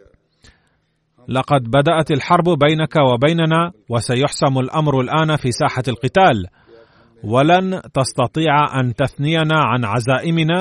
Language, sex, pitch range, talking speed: Arabic, male, 120-155 Hz, 95 wpm